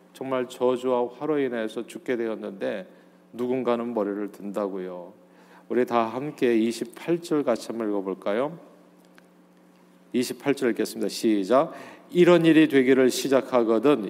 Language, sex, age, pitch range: Korean, male, 40-59, 115-150 Hz